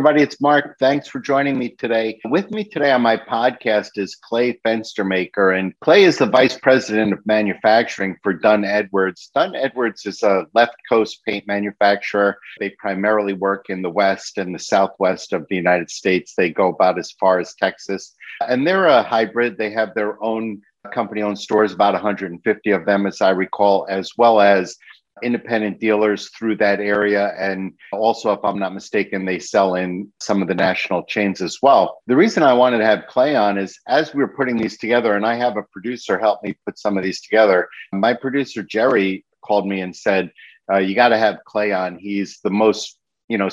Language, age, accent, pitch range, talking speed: English, 50-69, American, 95-115 Hz, 195 wpm